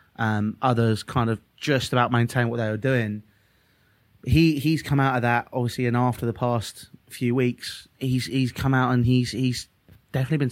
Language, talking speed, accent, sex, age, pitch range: English, 190 wpm, British, male, 20-39, 110-130 Hz